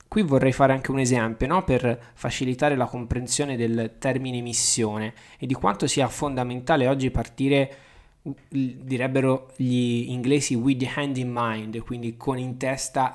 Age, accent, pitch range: 20-39, native, 115-140 Hz